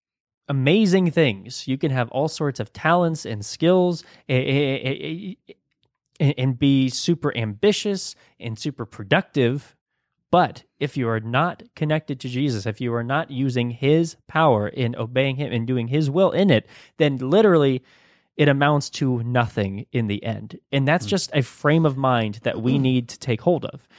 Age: 20-39